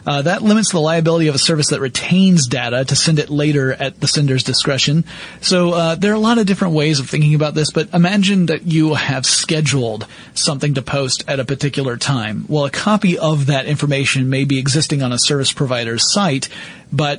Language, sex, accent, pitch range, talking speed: English, male, American, 135-165 Hz, 210 wpm